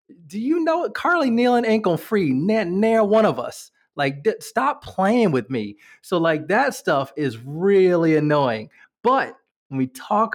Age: 30-49